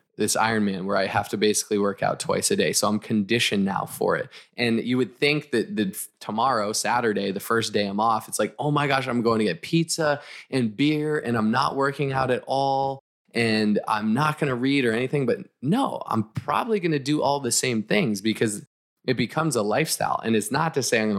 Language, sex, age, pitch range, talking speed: English, male, 20-39, 105-130 Hz, 230 wpm